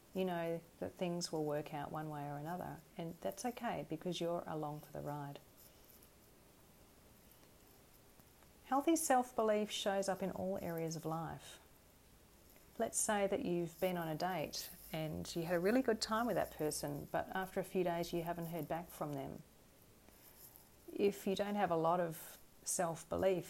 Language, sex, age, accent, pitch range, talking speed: English, female, 40-59, Australian, 150-195 Hz, 170 wpm